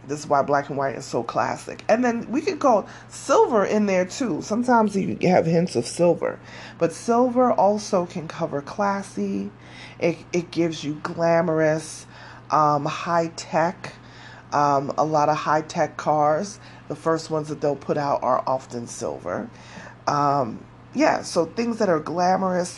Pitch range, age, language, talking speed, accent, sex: 150-205 Hz, 30-49, English, 160 wpm, American, female